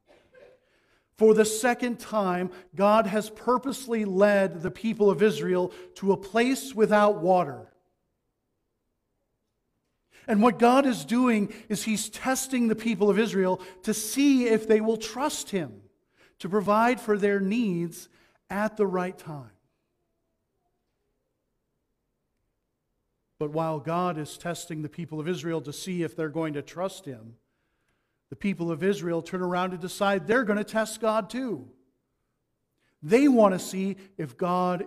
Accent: American